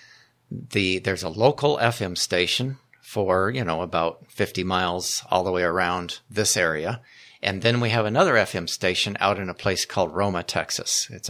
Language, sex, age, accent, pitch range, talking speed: English, male, 50-69, American, 90-115 Hz, 175 wpm